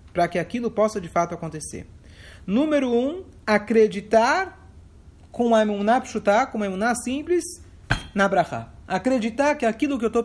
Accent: Brazilian